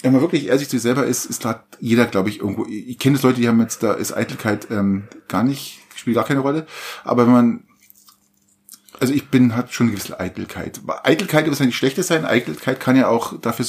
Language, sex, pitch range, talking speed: German, male, 105-130 Hz, 235 wpm